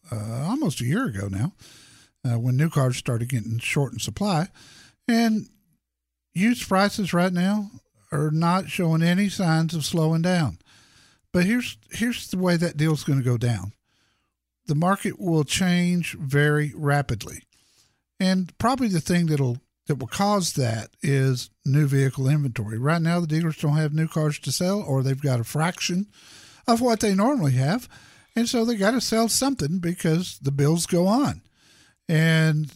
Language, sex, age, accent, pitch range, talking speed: English, male, 60-79, American, 140-185 Hz, 165 wpm